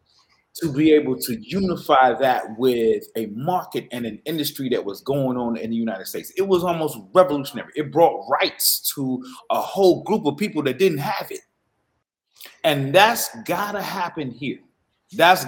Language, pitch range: English, 130-185 Hz